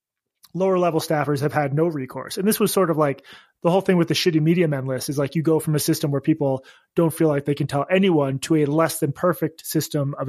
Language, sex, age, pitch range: English, male, 20-39, 145-175 Hz